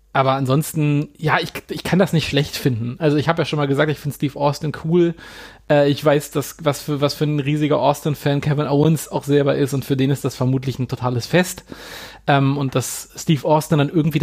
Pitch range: 135-160 Hz